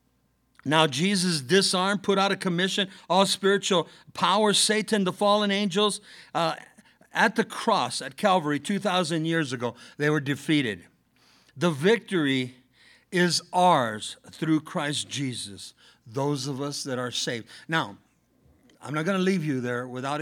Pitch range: 130-185 Hz